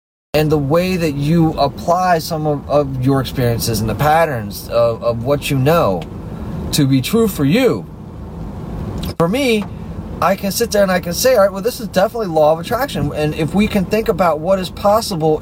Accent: American